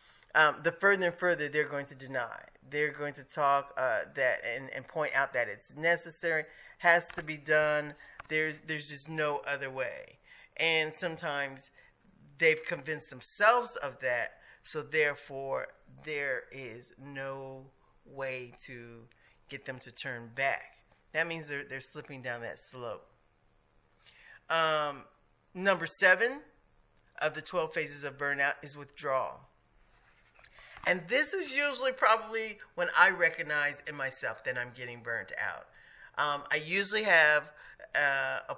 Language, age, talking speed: English, 40-59, 140 wpm